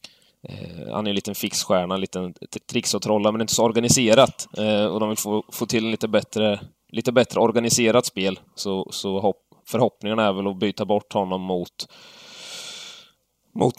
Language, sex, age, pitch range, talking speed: Swedish, male, 20-39, 90-110 Hz, 170 wpm